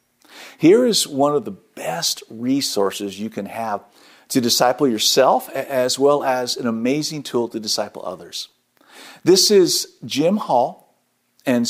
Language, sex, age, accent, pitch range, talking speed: English, male, 50-69, American, 115-155 Hz, 140 wpm